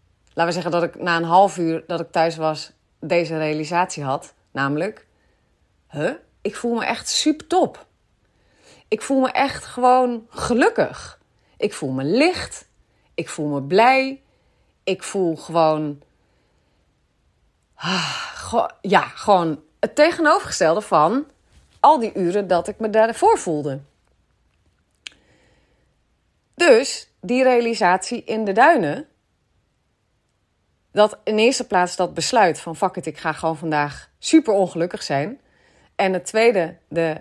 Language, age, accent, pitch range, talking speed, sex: Dutch, 30-49, Dutch, 160-235 Hz, 130 wpm, female